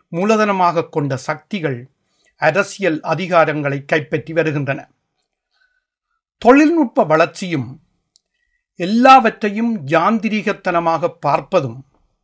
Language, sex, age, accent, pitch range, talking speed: Tamil, male, 60-79, native, 145-215 Hz, 60 wpm